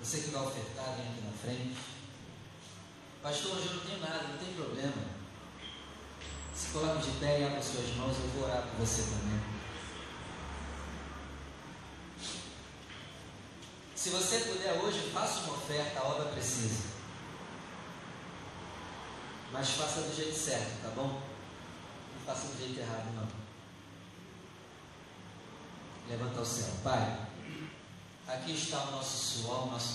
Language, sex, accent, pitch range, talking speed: Portuguese, male, Brazilian, 105-145 Hz, 130 wpm